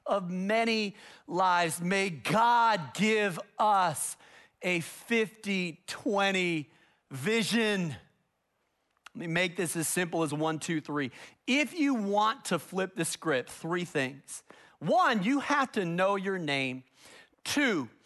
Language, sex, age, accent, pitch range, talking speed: English, male, 40-59, American, 170-230 Hz, 125 wpm